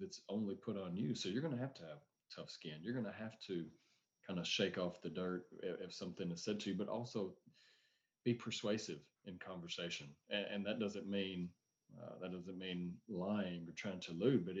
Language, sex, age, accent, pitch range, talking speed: English, male, 40-59, American, 90-105 Hz, 215 wpm